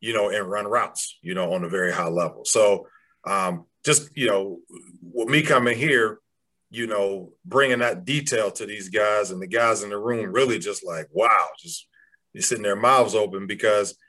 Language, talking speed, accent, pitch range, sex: English, 195 wpm, American, 105-170 Hz, male